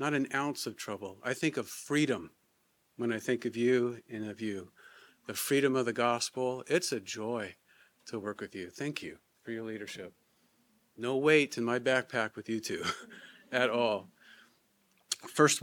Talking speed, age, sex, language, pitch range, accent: 175 wpm, 40-59, male, English, 120-145 Hz, American